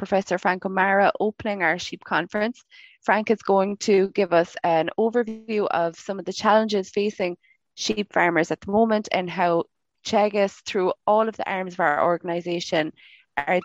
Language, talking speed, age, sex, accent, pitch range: English, 165 wpm, 20-39, female, Irish, 170-205 Hz